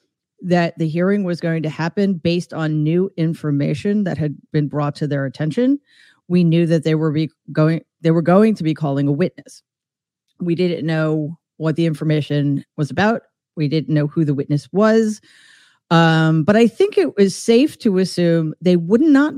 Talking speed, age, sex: 185 wpm, 40-59, female